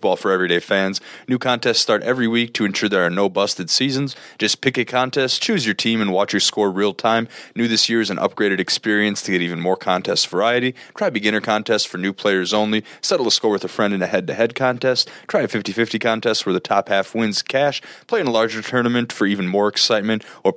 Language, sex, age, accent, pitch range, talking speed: English, male, 20-39, American, 100-120 Hz, 235 wpm